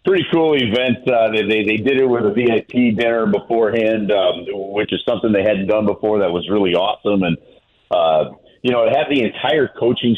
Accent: American